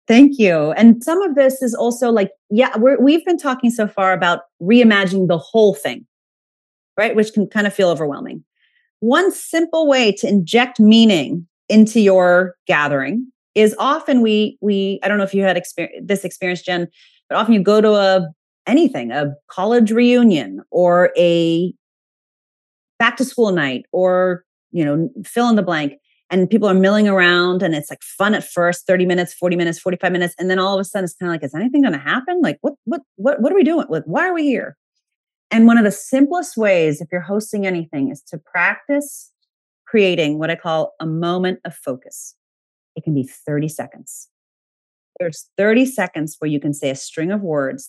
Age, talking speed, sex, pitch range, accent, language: 30-49, 195 wpm, female, 170-235 Hz, American, English